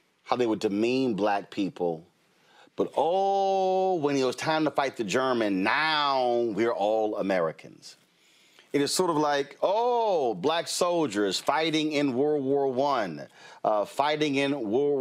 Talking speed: 150 wpm